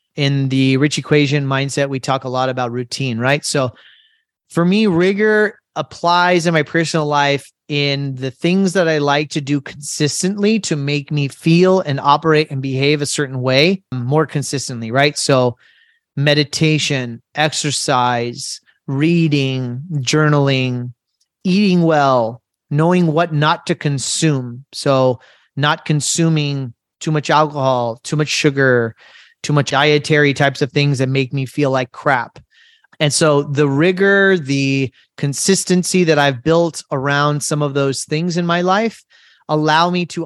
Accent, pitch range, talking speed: American, 135-165 Hz, 145 wpm